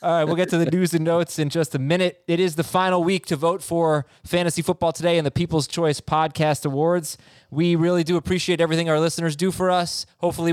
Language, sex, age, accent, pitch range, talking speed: English, male, 20-39, American, 135-170 Hz, 235 wpm